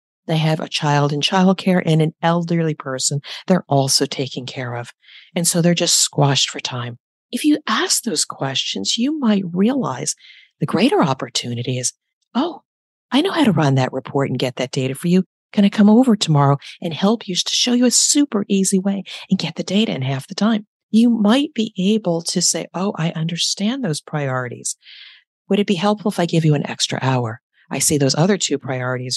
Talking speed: 205 wpm